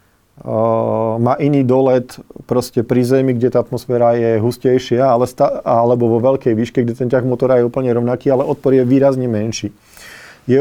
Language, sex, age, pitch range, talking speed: Slovak, male, 40-59, 115-135 Hz, 175 wpm